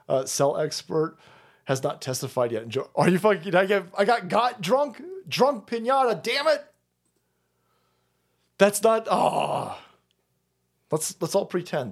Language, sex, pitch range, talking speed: English, male, 95-160 Hz, 150 wpm